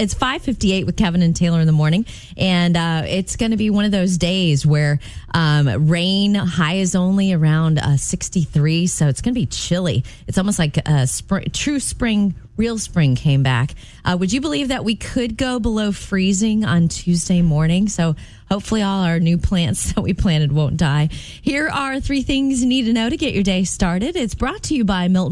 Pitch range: 145-210 Hz